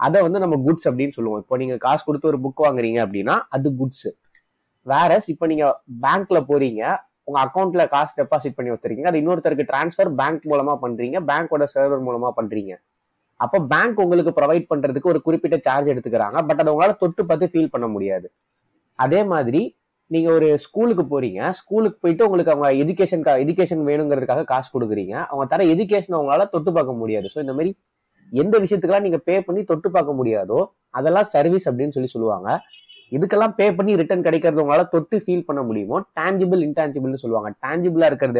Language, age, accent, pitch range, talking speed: Tamil, 20-39, native, 135-180 Hz, 110 wpm